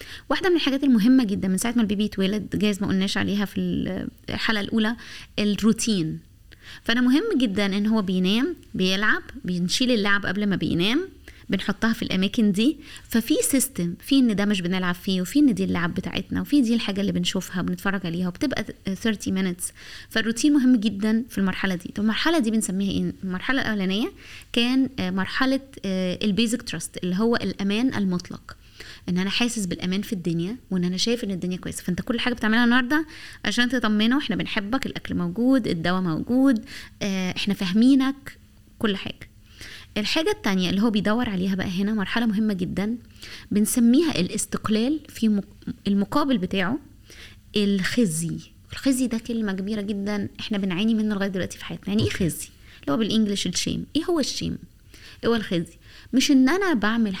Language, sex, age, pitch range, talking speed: Arabic, female, 20-39, 190-245 Hz, 160 wpm